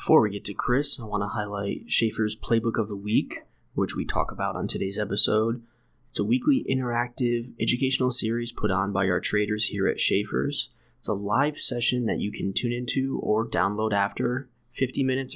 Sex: male